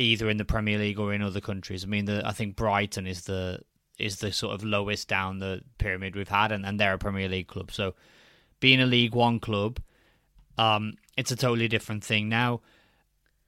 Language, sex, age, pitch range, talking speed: English, male, 20-39, 105-120 Hz, 210 wpm